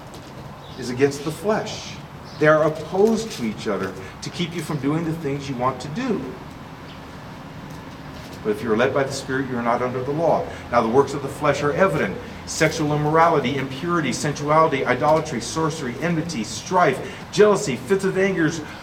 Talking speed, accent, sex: 170 wpm, American, male